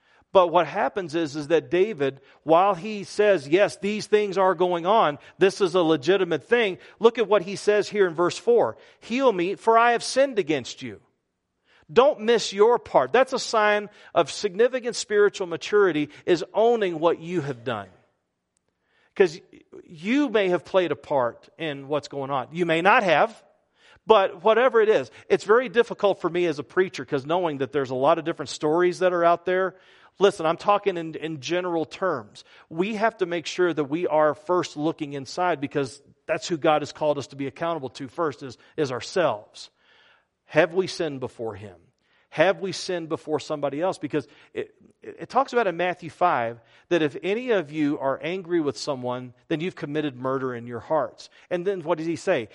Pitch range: 150-205 Hz